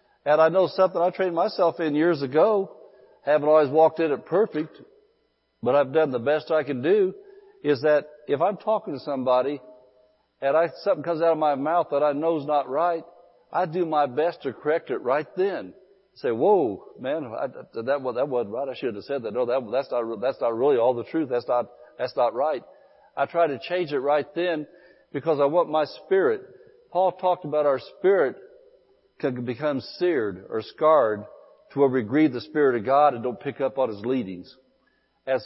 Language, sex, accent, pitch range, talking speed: English, male, American, 140-200 Hz, 205 wpm